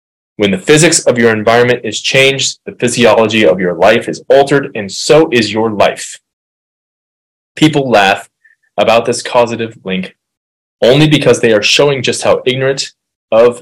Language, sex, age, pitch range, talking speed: English, male, 20-39, 100-130 Hz, 155 wpm